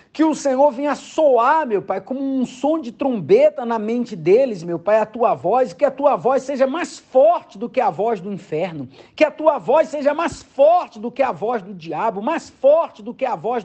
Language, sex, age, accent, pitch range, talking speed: Portuguese, male, 50-69, Brazilian, 235-300 Hz, 230 wpm